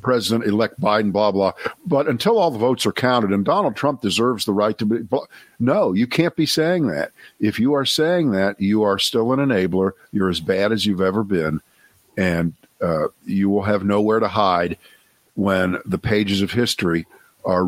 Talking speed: 195 wpm